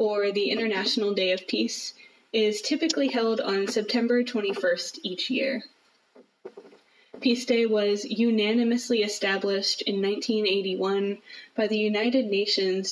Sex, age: female, 10-29